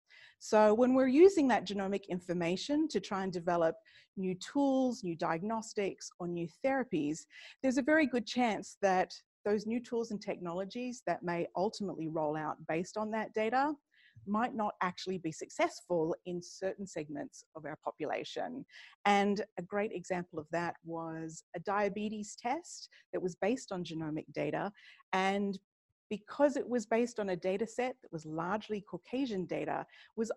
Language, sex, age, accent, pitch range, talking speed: English, female, 30-49, Australian, 175-240 Hz, 160 wpm